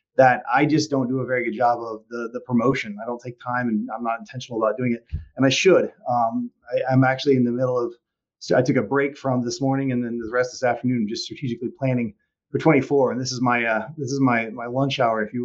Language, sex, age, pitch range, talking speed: English, male, 30-49, 125-145 Hz, 265 wpm